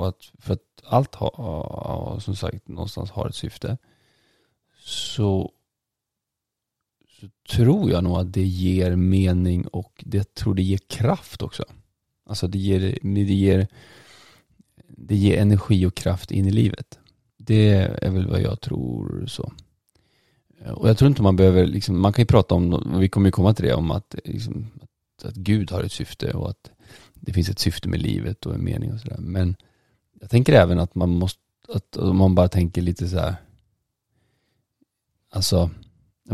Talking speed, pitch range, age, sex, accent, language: 170 wpm, 95-115 Hz, 30-49, male, native, Swedish